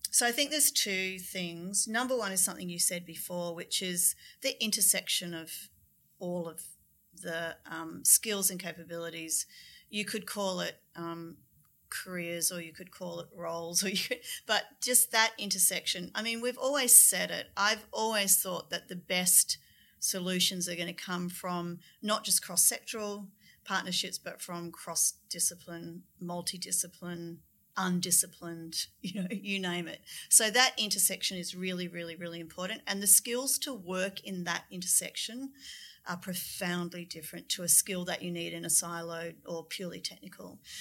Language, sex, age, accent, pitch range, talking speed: English, female, 30-49, Australian, 175-210 Hz, 155 wpm